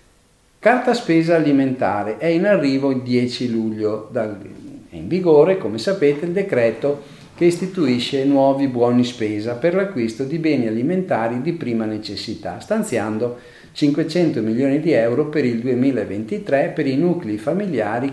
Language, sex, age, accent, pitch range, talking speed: Italian, male, 50-69, native, 115-160 Hz, 135 wpm